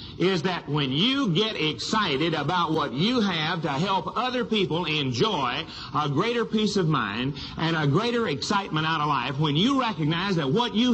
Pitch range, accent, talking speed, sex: 140-205 Hz, American, 180 wpm, male